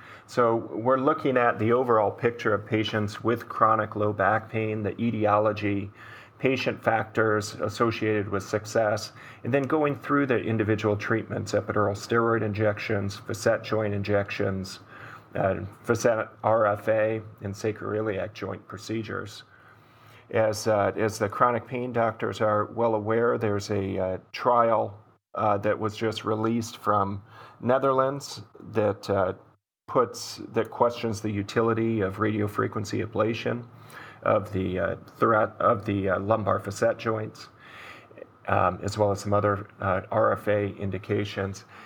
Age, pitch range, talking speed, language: 40-59, 100-115 Hz, 130 wpm, English